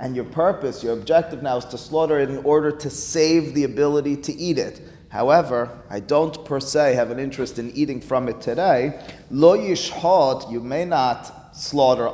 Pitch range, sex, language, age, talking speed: 125-155 Hz, male, English, 30-49, 190 wpm